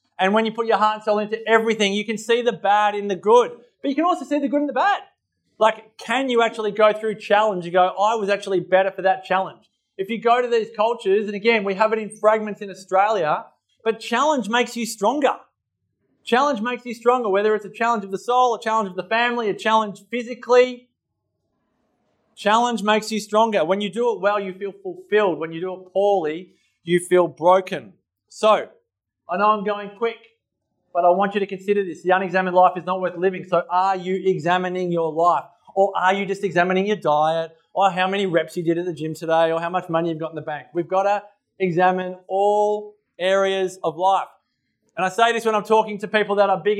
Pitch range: 185-220 Hz